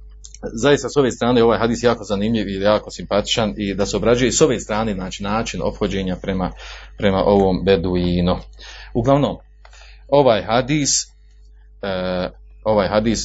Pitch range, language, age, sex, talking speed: 95-115 Hz, Croatian, 40-59, male, 125 wpm